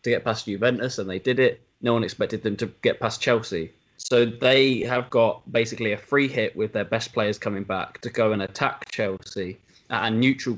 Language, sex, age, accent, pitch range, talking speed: English, male, 20-39, British, 105-125 Hz, 215 wpm